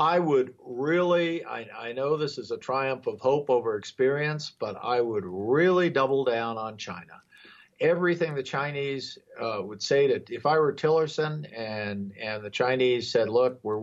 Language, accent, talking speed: English, American, 175 wpm